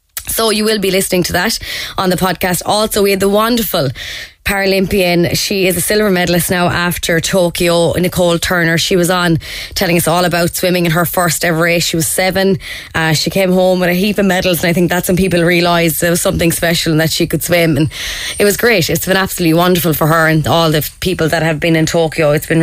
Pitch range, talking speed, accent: 165-190 Hz, 235 wpm, Irish